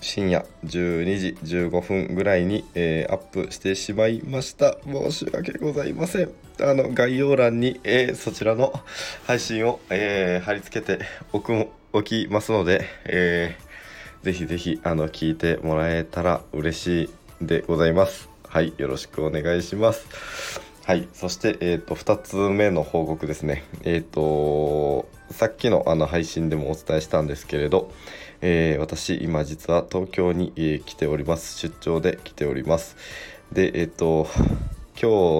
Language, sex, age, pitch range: Japanese, male, 20-39, 75-90 Hz